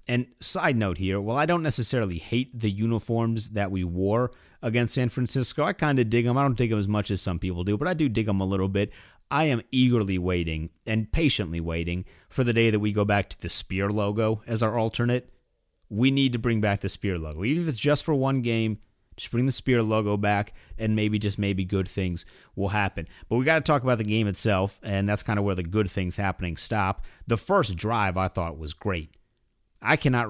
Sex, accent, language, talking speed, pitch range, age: male, American, English, 235 wpm, 95-120 Hz, 30-49